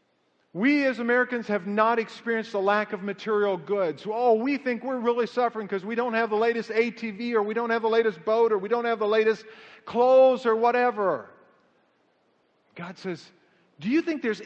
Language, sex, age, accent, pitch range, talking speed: English, male, 50-69, American, 165-220 Hz, 190 wpm